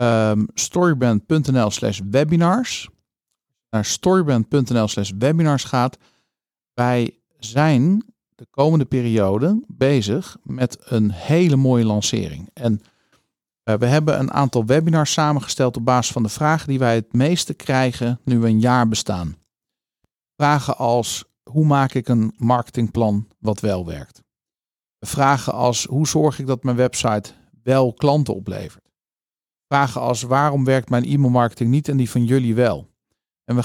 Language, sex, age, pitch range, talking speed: Dutch, male, 50-69, 120-155 Hz, 135 wpm